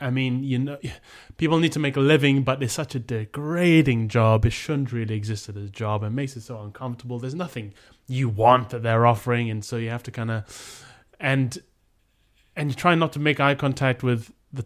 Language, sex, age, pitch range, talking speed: English, male, 20-39, 110-130 Hz, 215 wpm